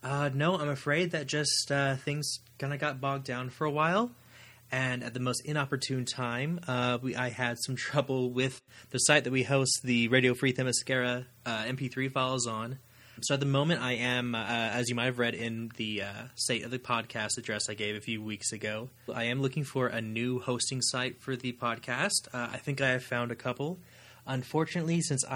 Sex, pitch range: male, 120-140 Hz